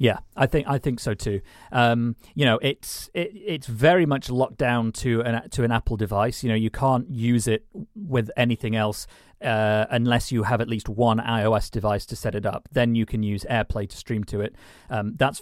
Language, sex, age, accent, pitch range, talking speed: English, male, 40-59, British, 110-130 Hz, 220 wpm